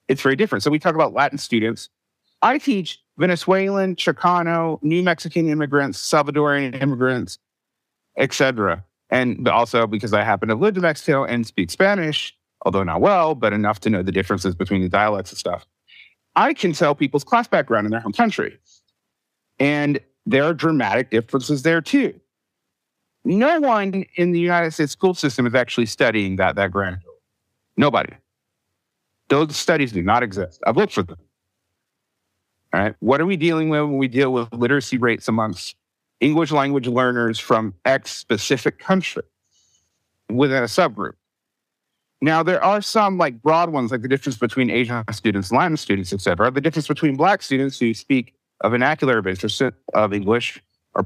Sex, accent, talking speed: male, American, 165 wpm